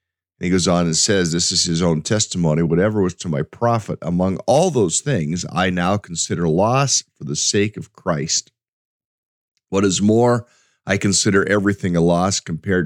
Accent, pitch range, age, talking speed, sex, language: American, 85-105 Hz, 50-69, 175 wpm, male, English